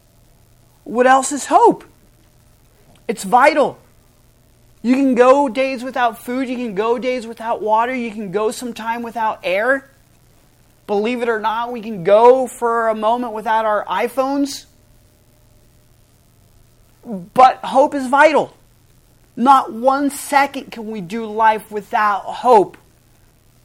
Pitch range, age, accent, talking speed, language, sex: 155-245 Hz, 30-49, American, 130 wpm, English, male